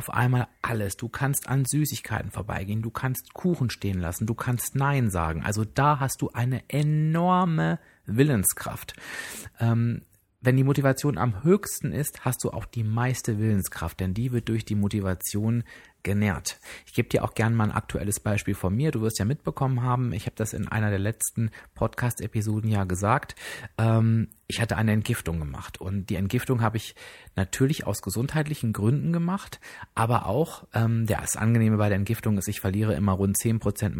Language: German